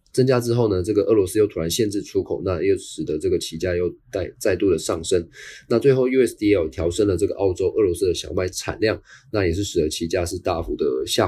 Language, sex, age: Chinese, male, 20-39